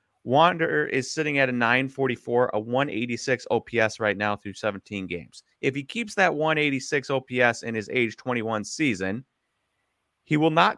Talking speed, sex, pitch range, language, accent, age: 155 wpm, male, 110-145 Hz, English, American, 30-49